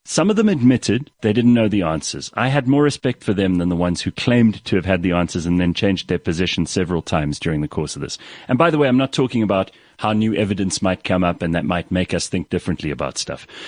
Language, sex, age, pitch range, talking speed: English, male, 40-59, 95-140 Hz, 265 wpm